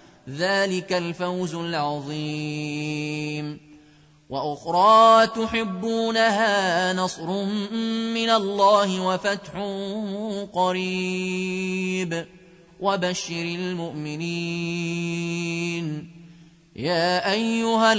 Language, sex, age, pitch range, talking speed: Arabic, male, 30-49, 170-225 Hz, 45 wpm